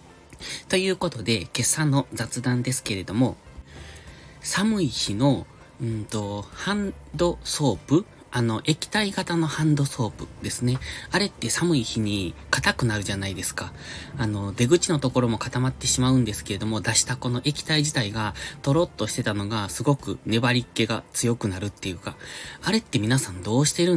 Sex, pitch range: male, 105-150 Hz